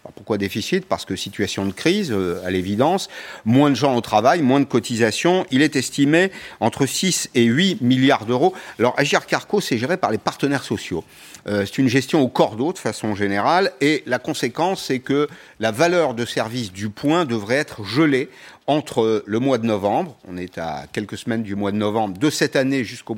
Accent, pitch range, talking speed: French, 105-140 Hz, 200 wpm